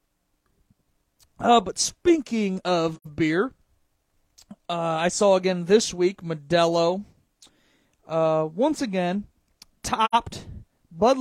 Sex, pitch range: male, 170-205 Hz